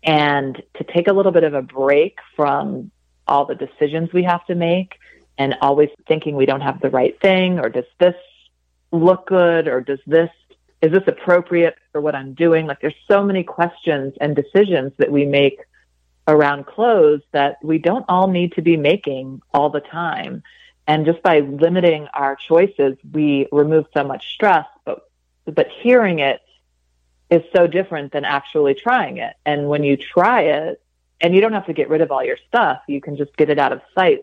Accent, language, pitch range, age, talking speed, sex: American, English, 140-175 Hz, 40-59, 195 wpm, female